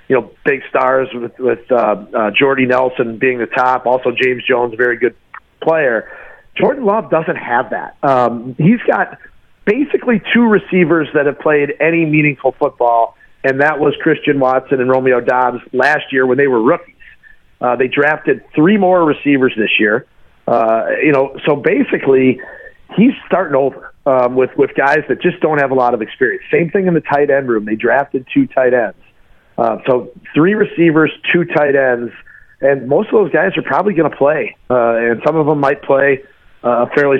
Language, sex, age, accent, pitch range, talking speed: English, male, 40-59, American, 125-155 Hz, 185 wpm